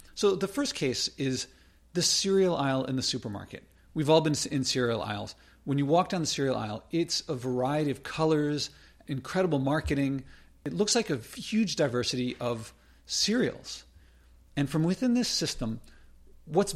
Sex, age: male, 40-59